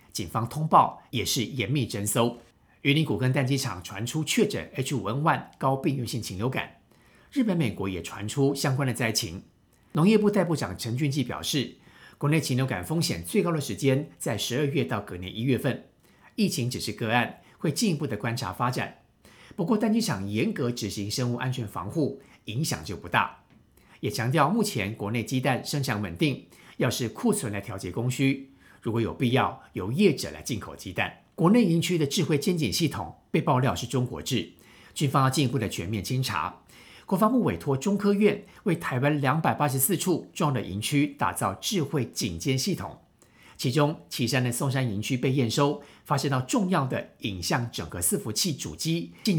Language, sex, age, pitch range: Chinese, male, 50-69, 115-150 Hz